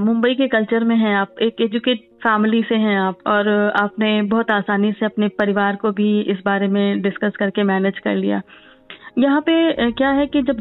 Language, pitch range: Hindi, 210-250 Hz